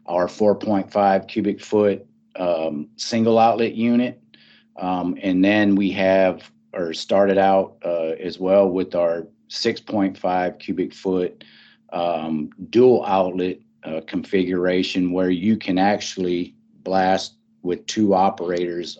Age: 40-59